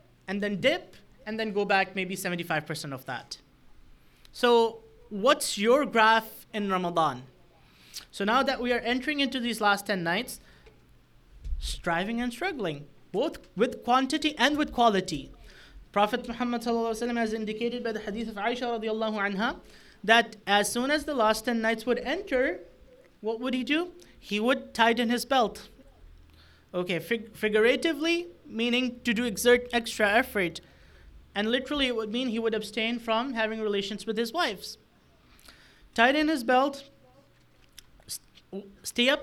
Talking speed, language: 145 wpm, English